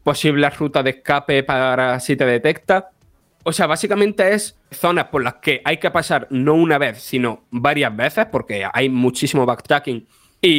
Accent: Spanish